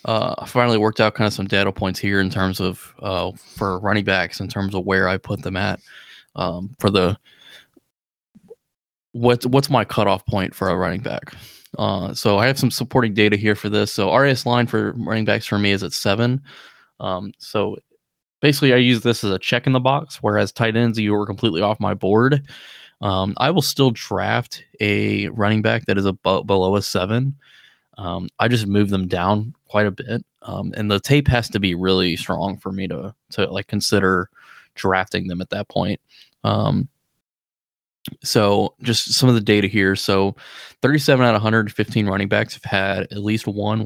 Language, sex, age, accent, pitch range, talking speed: English, male, 20-39, American, 100-120 Hz, 195 wpm